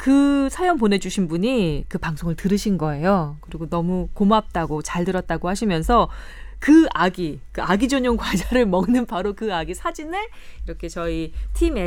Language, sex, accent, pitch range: Korean, female, native, 160-245 Hz